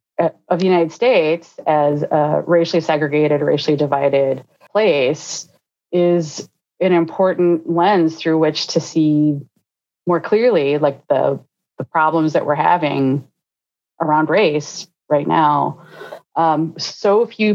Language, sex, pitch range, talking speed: English, female, 145-175 Hz, 120 wpm